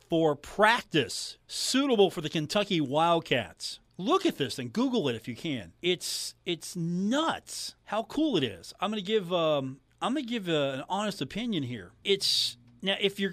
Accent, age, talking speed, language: American, 40-59, 185 wpm, English